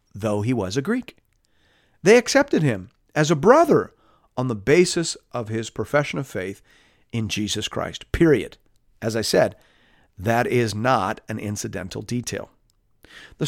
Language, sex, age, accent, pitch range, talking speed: English, male, 40-59, American, 115-160 Hz, 145 wpm